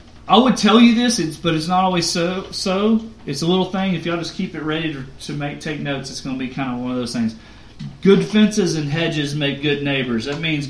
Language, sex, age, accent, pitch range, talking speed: English, male, 40-59, American, 140-210 Hz, 260 wpm